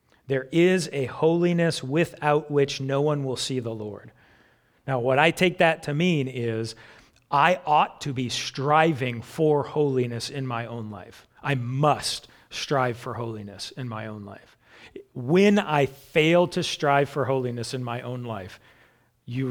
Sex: male